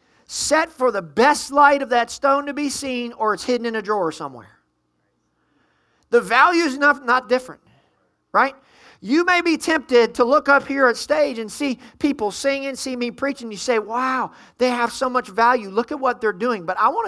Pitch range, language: 230-290 Hz, English